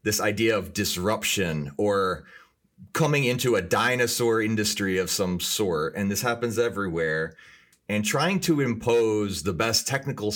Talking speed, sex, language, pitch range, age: 140 wpm, male, English, 95-115 Hz, 30-49